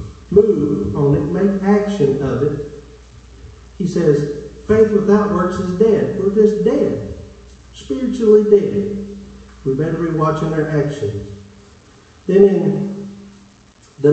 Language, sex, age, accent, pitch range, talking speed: English, male, 50-69, American, 145-205 Hz, 120 wpm